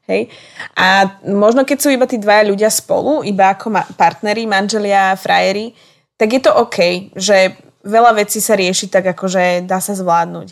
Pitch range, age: 185-210 Hz, 20-39